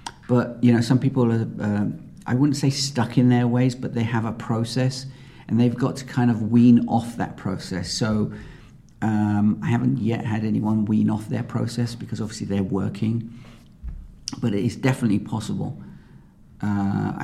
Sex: male